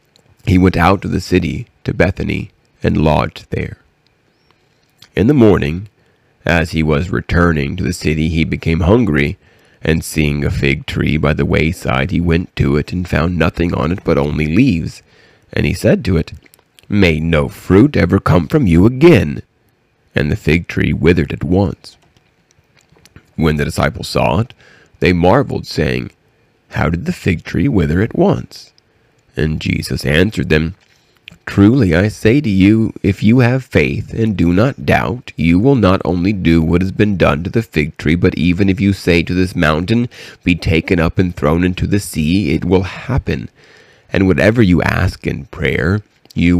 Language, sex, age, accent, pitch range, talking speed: English, male, 40-59, American, 80-100 Hz, 170 wpm